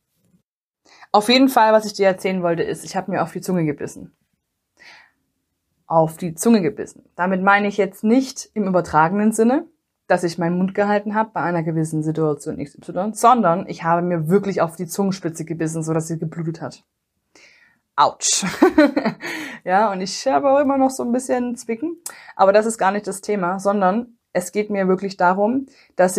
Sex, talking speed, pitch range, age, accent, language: female, 175 wpm, 175-220 Hz, 20-39, German, German